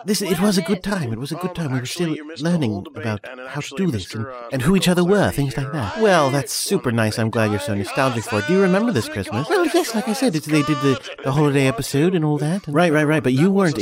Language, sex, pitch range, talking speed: English, male, 115-170 Hz, 290 wpm